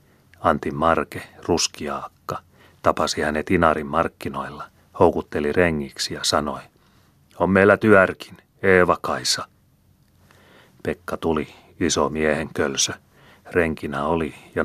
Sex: male